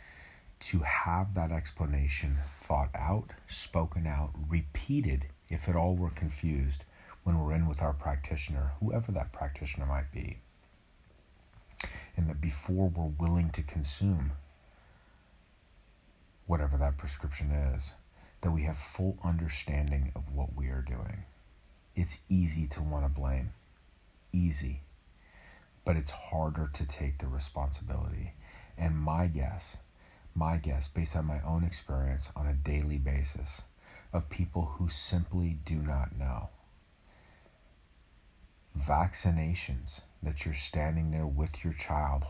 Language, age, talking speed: English, 40-59, 125 wpm